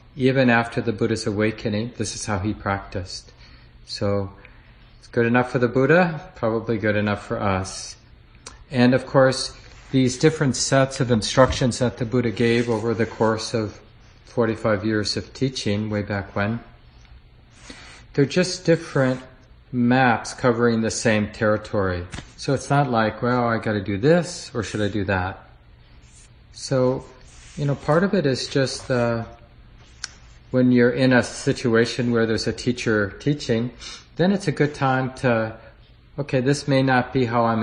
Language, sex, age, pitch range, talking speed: English, male, 40-59, 105-130 Hz, 160 wpm